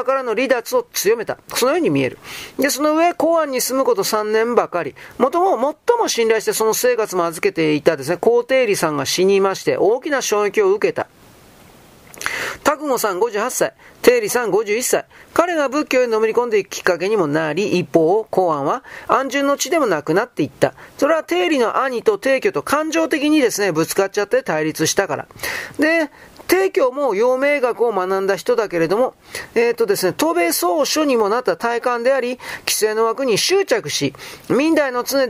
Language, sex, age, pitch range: Japanese, male, 40-59, 210-350 Hz